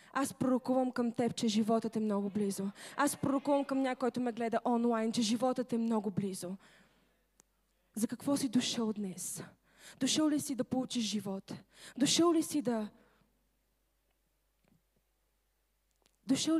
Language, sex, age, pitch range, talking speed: Bulgarian, female, 20-39, 210-265 Hz, 135 wpm